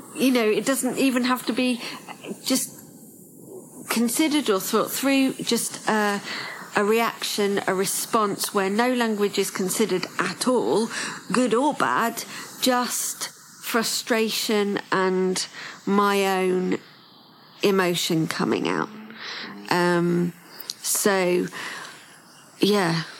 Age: 40-59